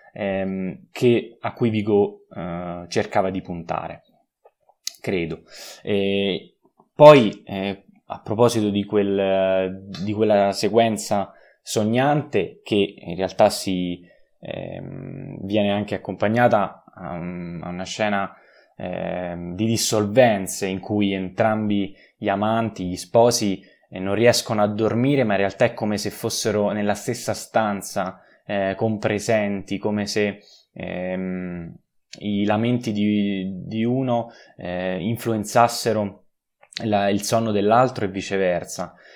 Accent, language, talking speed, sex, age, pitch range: native, Italian, 115 wpm, male, 20-39, 95-110 Hz